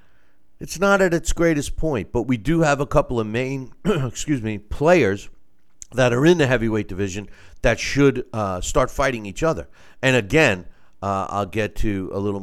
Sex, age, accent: male, 50-69, American